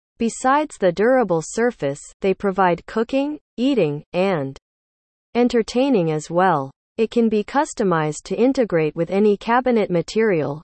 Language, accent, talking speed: English, American, 125 wpm